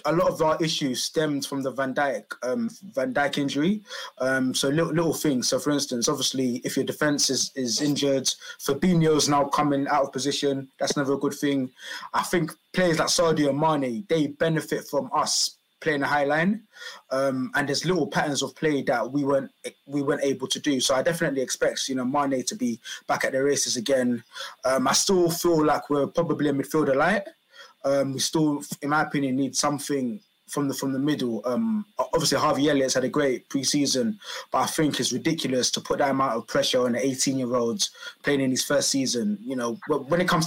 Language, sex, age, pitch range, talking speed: English, male, 20-39, 135-165 Hz, 210 wpm